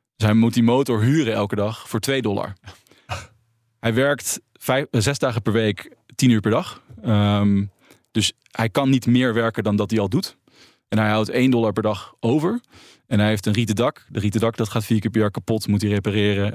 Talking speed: 210 wpm